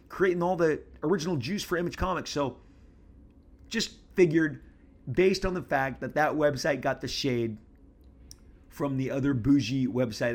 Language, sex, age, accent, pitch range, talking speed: English, male, 30-49, American, 105-130 Hz, 150 wpm